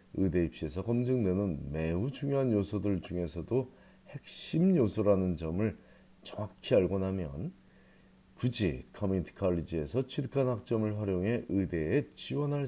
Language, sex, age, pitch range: Korean, male, 40-59, 85-120 Hz